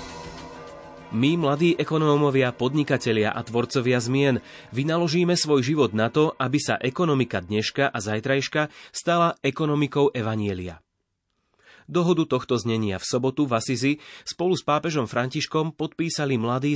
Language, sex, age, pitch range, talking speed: Slovak, male, 30-49, 110-140 Hz, 120 wpm